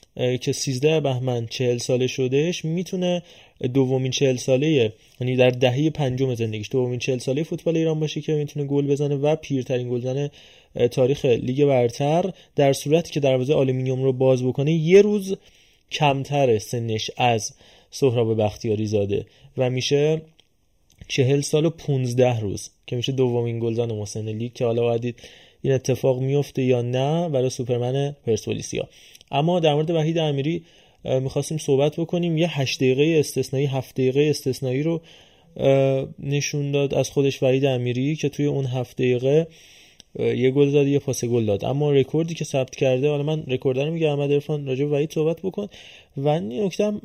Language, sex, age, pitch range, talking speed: Persian, male, 20-39, 125-155 Hz, 155 wpm